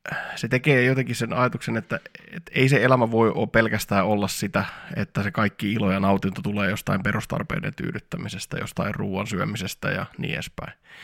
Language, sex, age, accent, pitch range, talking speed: Finnish, male, 20-39, native, 105-130 Hz, 165 wpm